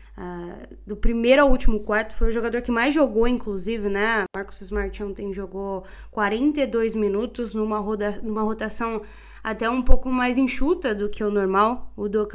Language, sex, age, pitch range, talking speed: Portuguese, female, 10-29, 205-255 Hz, 170 wpm